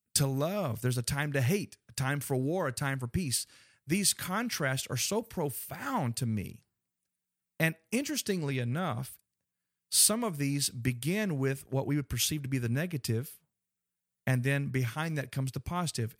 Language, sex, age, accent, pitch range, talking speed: English, male, 40-59, American, 120-160 Hz, 165 wpm